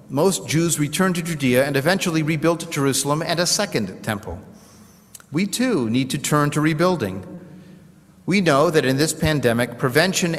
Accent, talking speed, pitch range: American, 155 wpm, 135-175 Hz